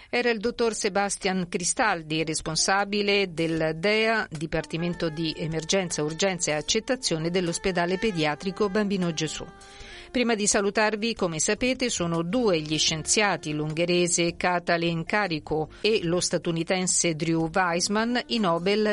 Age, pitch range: 50-69, 165-210 Hz